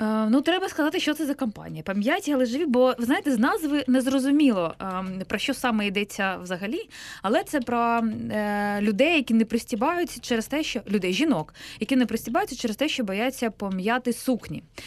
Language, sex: Ukrainian, female